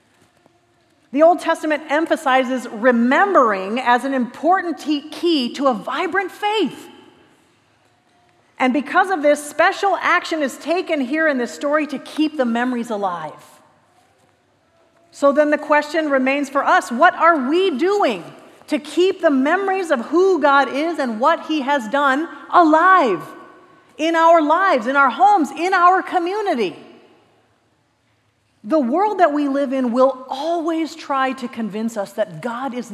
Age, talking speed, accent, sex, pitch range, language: 40-59, 145 wpm, American, female, 245-335 Hz, English